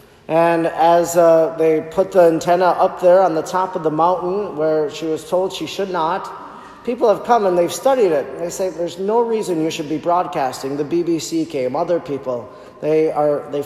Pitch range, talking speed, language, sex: 155-195 Hz, 200 wpm, English, male